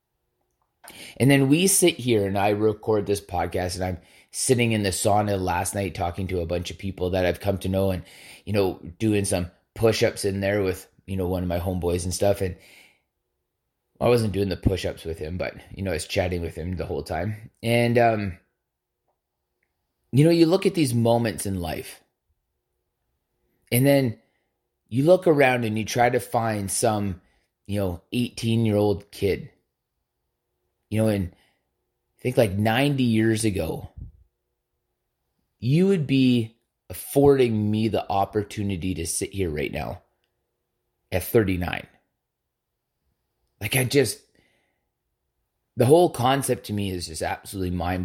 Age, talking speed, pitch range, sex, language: 20-39, 160 wpm, 90-120 Hz, male, English